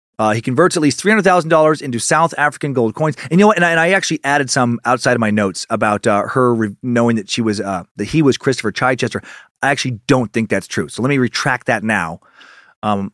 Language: English